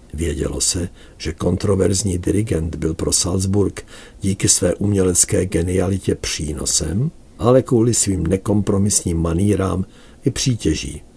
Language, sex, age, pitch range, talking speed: Czech, male, 60-79, 80-105 Hz, 105 wpm